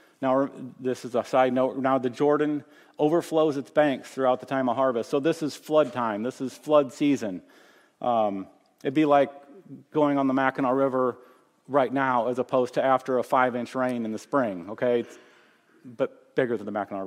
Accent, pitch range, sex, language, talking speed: American, 125-145 Hz, male, English, 185 wpm